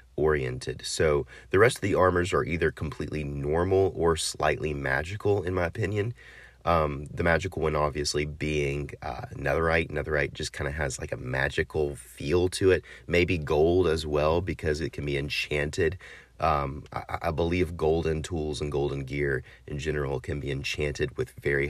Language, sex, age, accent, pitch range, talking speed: English, male, 30-49, American, 70-90 Hz, 170 wpm